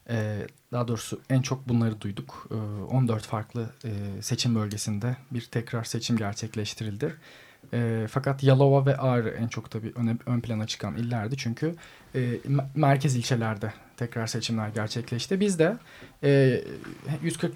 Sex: male